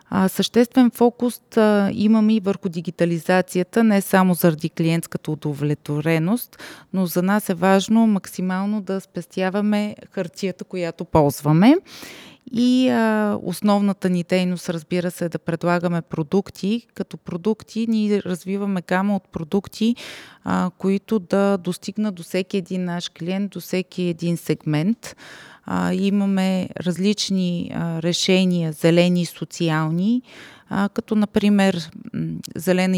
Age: 30-49